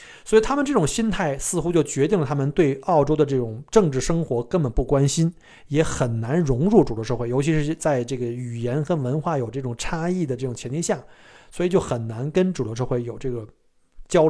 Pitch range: 130-185 Hz